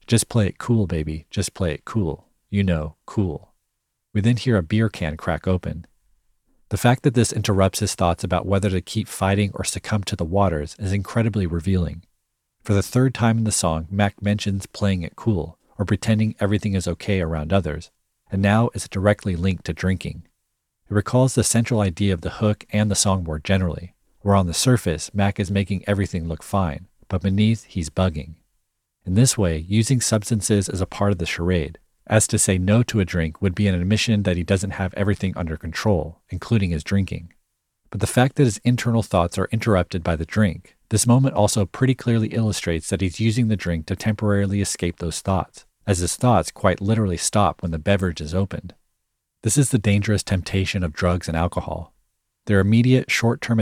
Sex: male